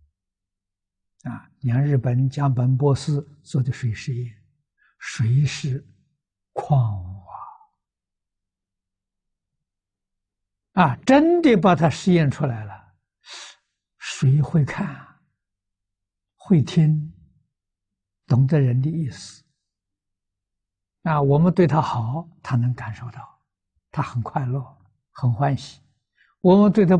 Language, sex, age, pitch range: Chinese, male, 60-79, 95-145 Hz